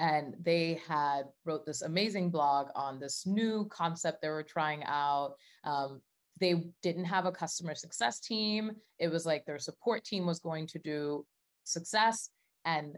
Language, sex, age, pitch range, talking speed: English, female, 20-39, 145-180 Hz, 160 wpm